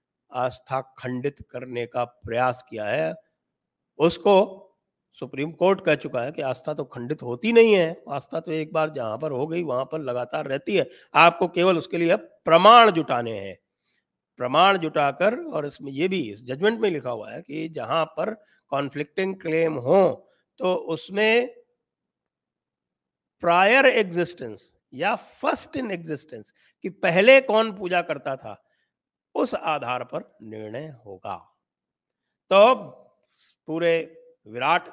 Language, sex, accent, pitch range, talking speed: English, male, Indian, 130-175 Hz, 135 wpm